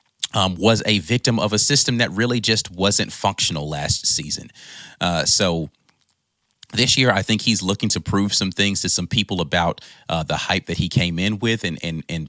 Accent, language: American, English